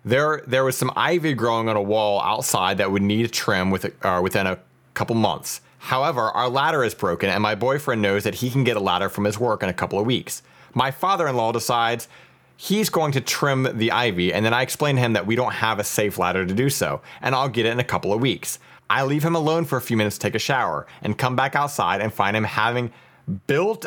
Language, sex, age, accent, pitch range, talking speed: English, male, 30-49, American, 110-155 Hz, 245 wpm